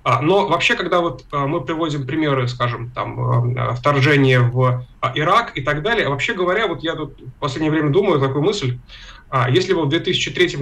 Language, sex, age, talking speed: Russian, male, 20-39, 170 wpm